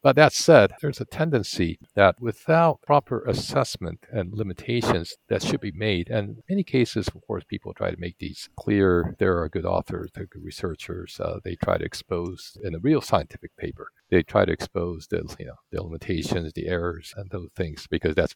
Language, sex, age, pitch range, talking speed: English, male, 50-69, 85-115 Hz, 195 wpm